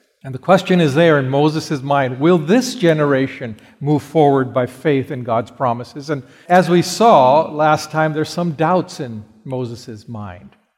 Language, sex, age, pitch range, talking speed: English, male, 50-69, 130-180 Hz, 165 wpm